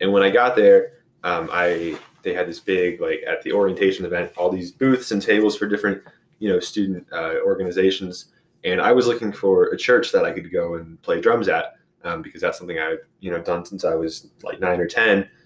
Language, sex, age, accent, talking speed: English, male, 20-39, American, 225 wpm